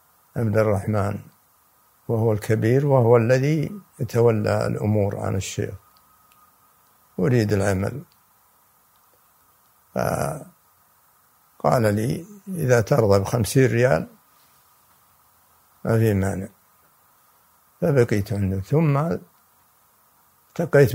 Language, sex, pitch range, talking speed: Arabic, male, 105-130 Hz, 70 wpm